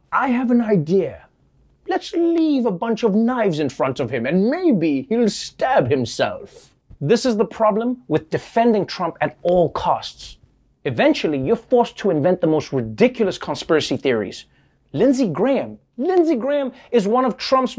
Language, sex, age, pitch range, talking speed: English, male, 30-49, 155-230 Hz, 160 wpm